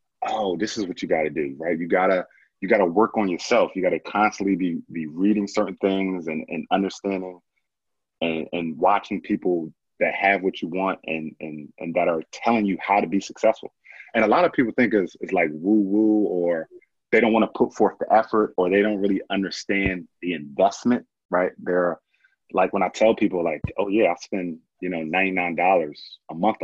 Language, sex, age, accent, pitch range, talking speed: English, male, 30-49, American, 85-105 Hz, 200 wpm